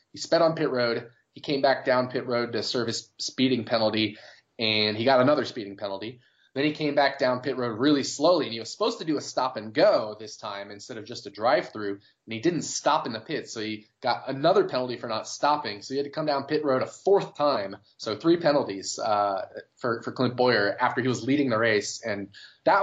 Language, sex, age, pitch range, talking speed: English, male, 20-39, 110-130 Hz, 240 wpm